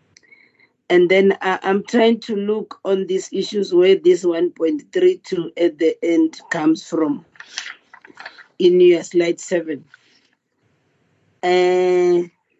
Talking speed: 105 wpm